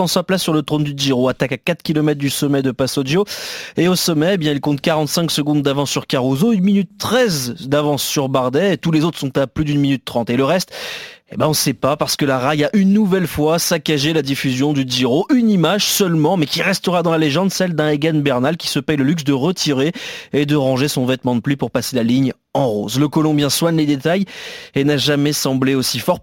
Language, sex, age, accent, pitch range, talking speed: French, male, 30-49, French, 140-175 Hz, 245 wpm